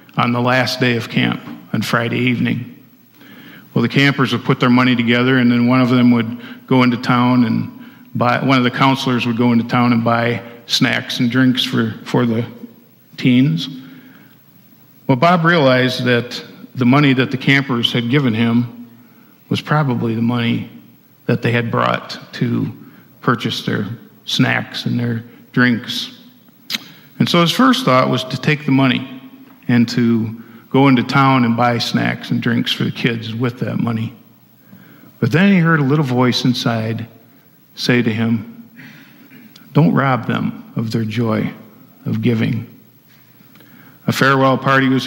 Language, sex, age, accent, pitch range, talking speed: English, male, 50-69, American, 120-135 Hz, 160 wpm